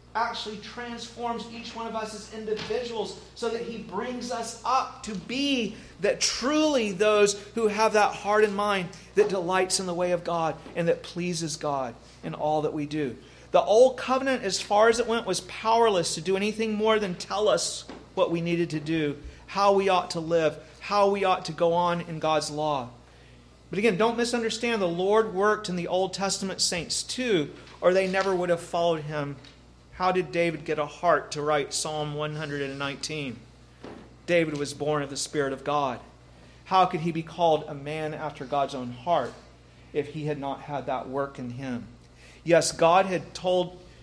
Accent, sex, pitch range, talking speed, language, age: American, male, 145-200 Hz, 190 wpm, English, 40-59